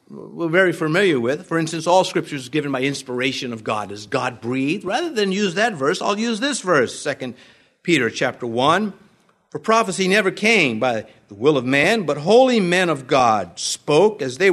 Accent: American